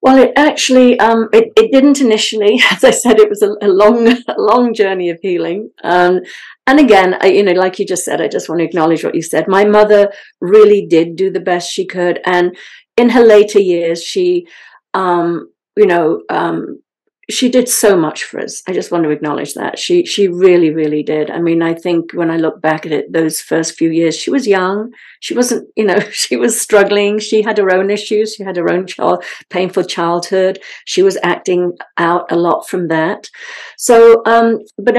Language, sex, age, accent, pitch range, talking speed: English, female, 50-69, British, 170-225 Hz, 210 wpm